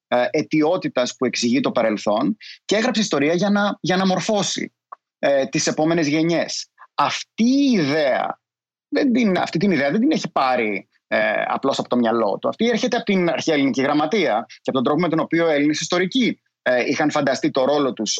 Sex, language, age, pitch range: male, Greek, 30-49, 145-215 Hz